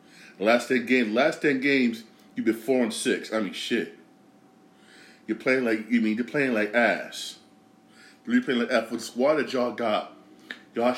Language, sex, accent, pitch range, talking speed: English, male, American, 100-120 Hz, 180 wpm